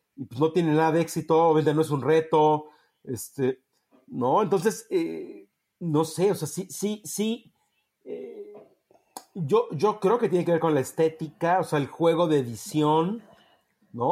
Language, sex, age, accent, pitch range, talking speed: Spanish, male, 40-59, Mexican, 145-195 Hz, 175 wpm